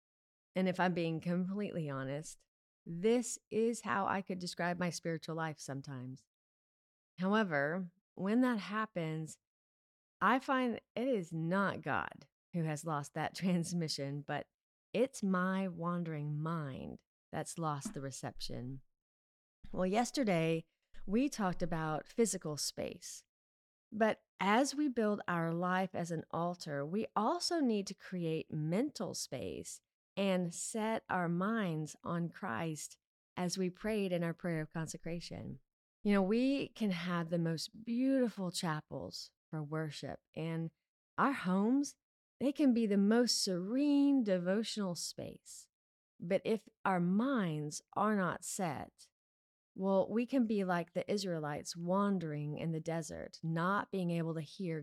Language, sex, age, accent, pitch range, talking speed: English, female, 30-49, American, 155-205 Hz, 135 wpm